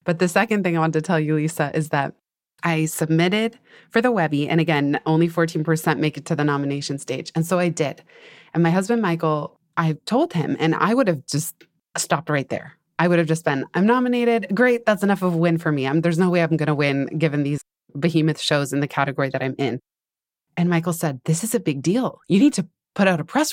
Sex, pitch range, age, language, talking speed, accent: female, 155-190 Hz, 20-39, English, 235 wpm, American